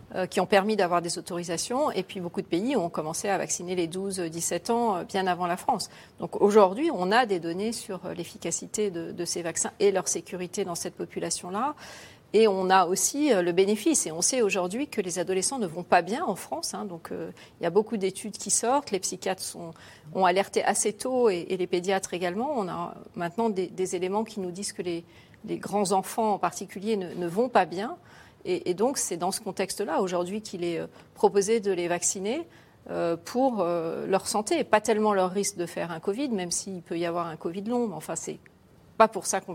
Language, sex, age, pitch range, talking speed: French, female, 40-59, 175-215 Hz, 215 wpm